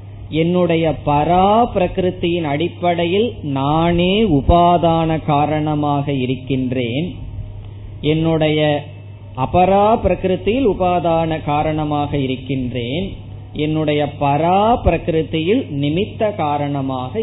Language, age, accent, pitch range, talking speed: Tamil, 20-39, native, 120-175 Hz, 50 wpm